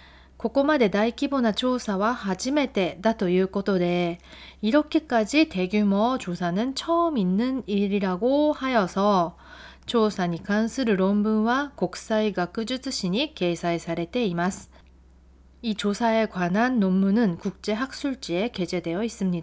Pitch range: 180-245 Hz